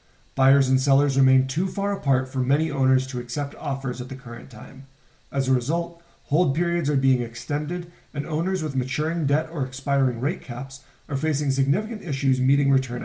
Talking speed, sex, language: 185 wpm, male, English